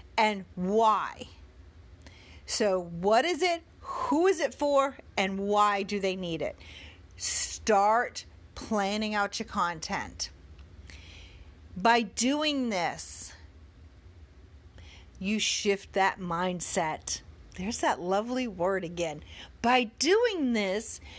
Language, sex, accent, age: English, female, American, 40-59